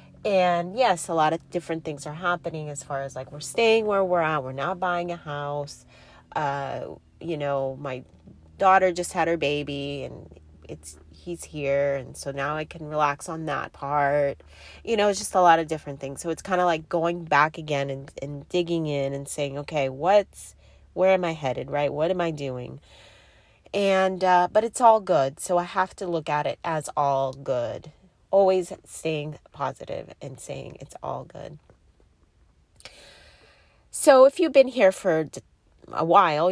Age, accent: 30-49, American